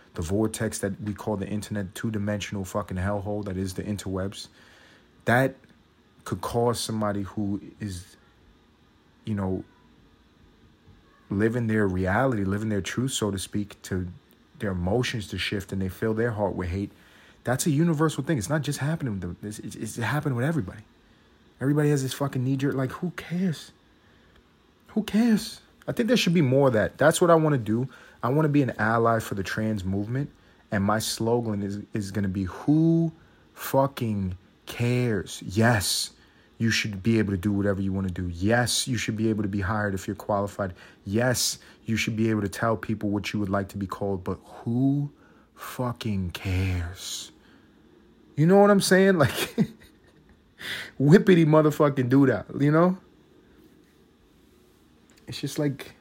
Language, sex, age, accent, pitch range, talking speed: English, male, 30-49, American, 100-130 Hz, 170 wpm